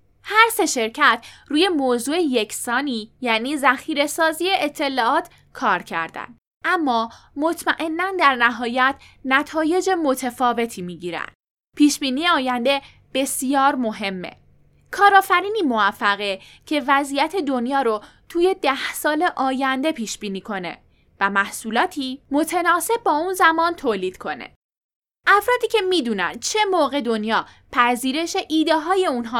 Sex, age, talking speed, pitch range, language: female, 10-29, 110 wpm, 225-330 Hz, Persian